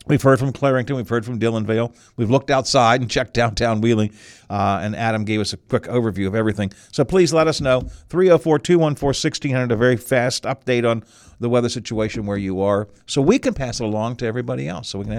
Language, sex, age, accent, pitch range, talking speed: English, male, 50-69, American, 110-150 Hz, 215 wpm